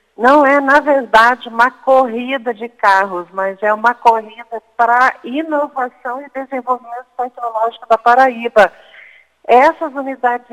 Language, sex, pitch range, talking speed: Portuguese, female, 225-275 Hz, 120 wpm